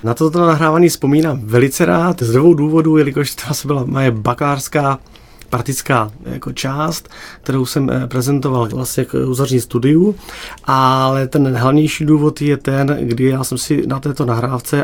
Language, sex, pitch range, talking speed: Czech, male, 120-145 Hz, 150 wpm